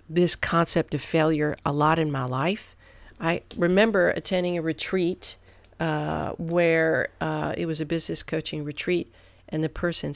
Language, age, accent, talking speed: English, 50-69, American, 155 wpm